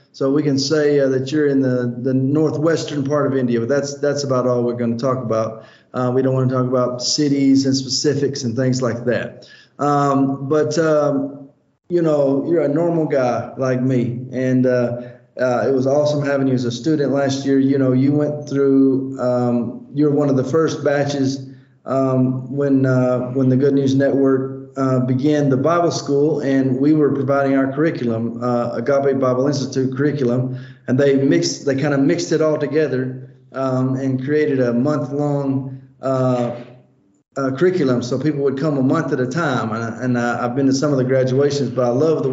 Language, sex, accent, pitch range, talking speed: English, male, American, 130-145 Hz, 200 wpm